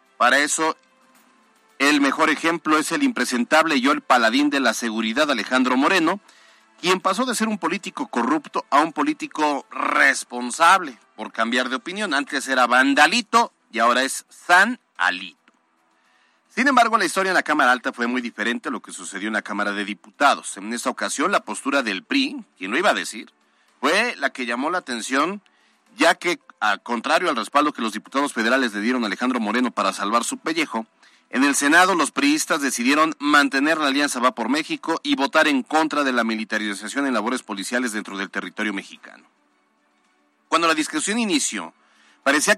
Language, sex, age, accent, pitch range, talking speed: Spanish, male, 40-59, Mexican, 110-185 Hz, 180 wpm